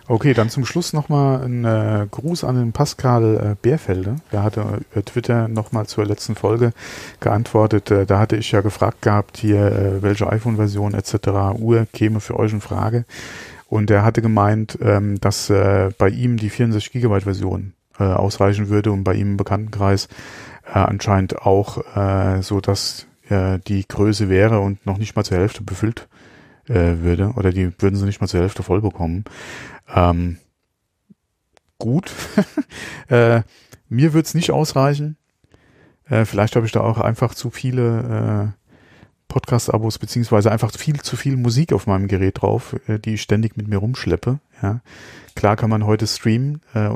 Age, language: 40-59, German